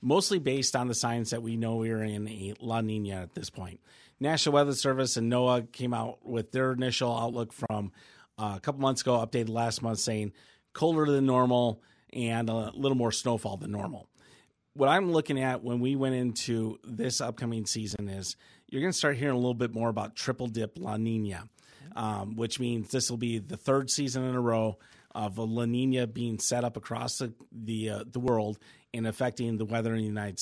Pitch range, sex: 110-130 Hz, male